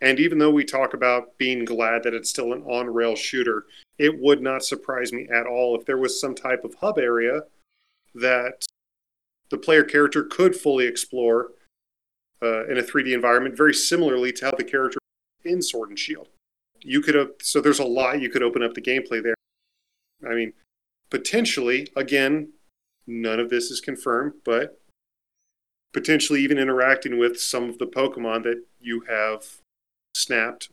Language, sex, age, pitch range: English, male, 40-59, 120-145 Hz